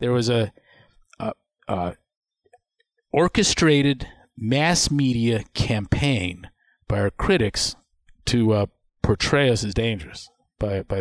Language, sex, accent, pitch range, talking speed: English, male, American, 110-140 Hz, 110 wpm